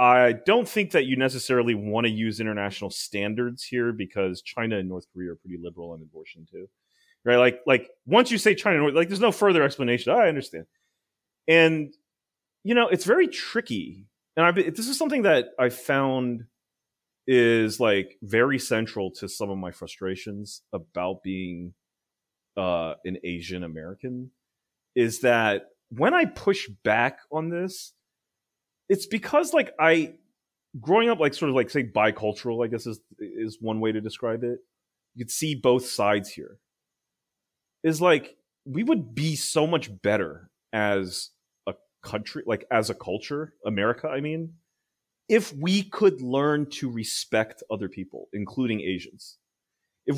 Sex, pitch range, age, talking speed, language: male, 105-160 Hz, 30-49, 155 wpm, English